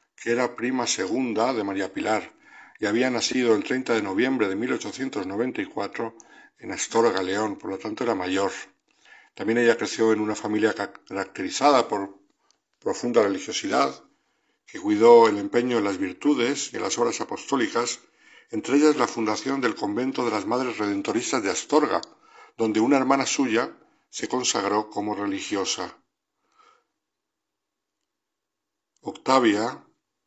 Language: Spanish